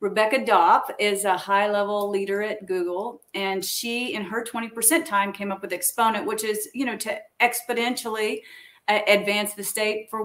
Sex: female